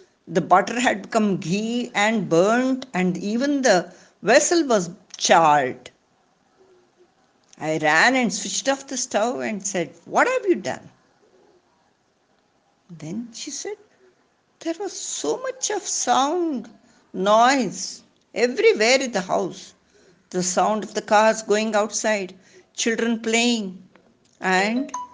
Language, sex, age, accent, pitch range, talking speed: English, female, 60-79, Indian, 185-280 Hz, 120 wpm